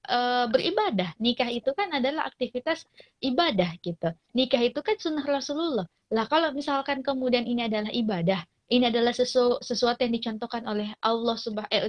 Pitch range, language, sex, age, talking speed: 205-250 Hz, Indonesian, female, 20-39, 150 wpm